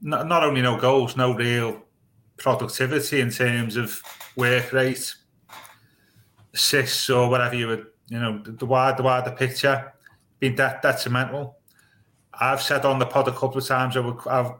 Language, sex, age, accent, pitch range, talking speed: English, male, 30-49, British, 115-135 Hz, 175 wpm